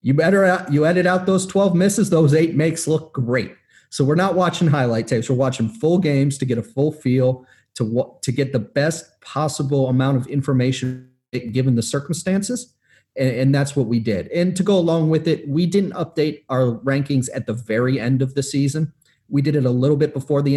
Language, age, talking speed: English, 30-49, 210 wpm